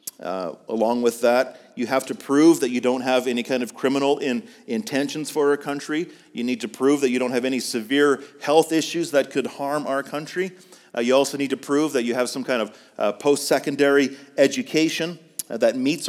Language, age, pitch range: English, 40-59, 130-165 Hz